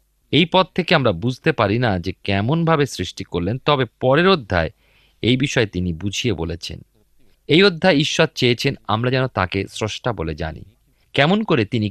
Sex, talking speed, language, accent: male, 160 wpm, Bengali, native